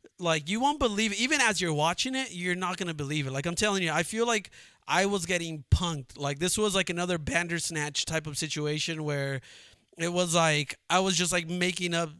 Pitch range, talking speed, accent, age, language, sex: 145-190 Hz, 220 wpm, American, 20-39, English, male